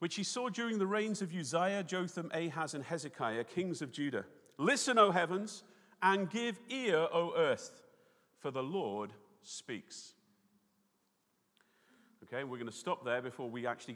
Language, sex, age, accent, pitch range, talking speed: English, male, 40-59, British, 125-195 Hz, 155 wpm